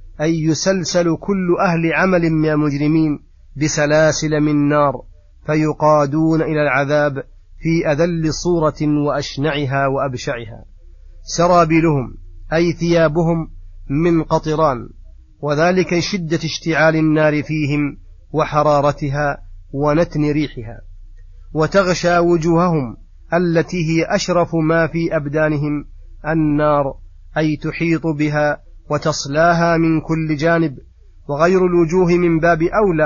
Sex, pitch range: male, 140-165 Hz